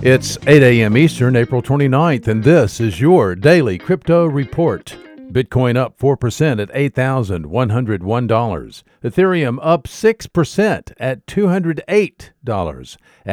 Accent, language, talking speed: American, English, 105 wpm